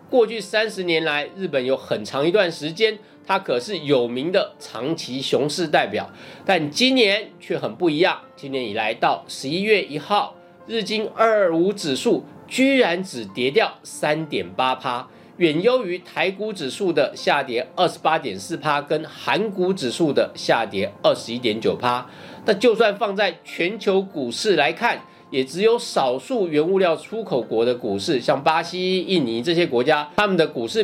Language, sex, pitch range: Chinese, male, 150-215 Hz